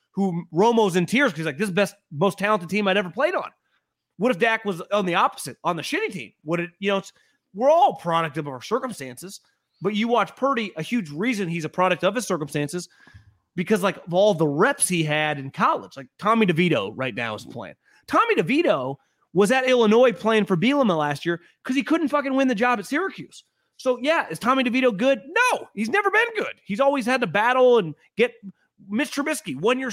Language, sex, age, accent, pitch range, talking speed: English, male, 30-49, American, 170-260 Hz, 220 wpm